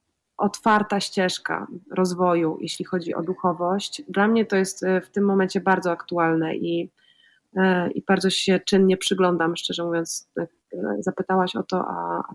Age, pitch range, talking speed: 20-39, 165-190 Hz, 140 wpm